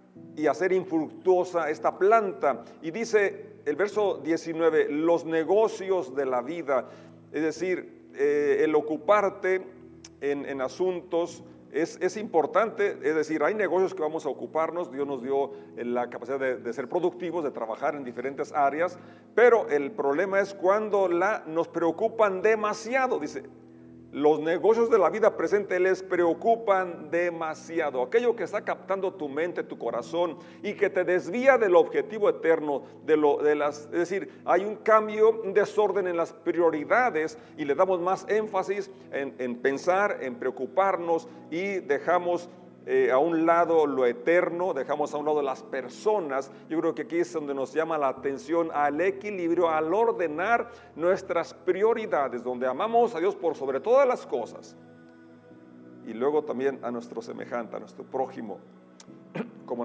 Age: 40-59